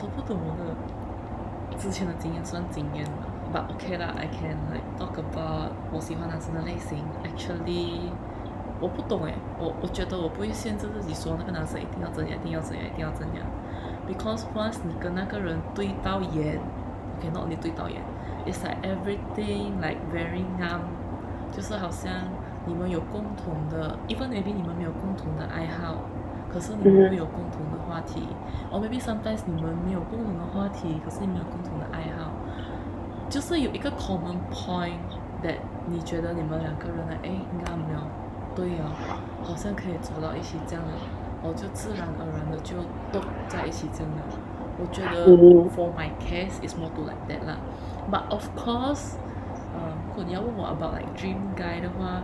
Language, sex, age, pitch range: Chinese, female, 20-39, 85-105 Hz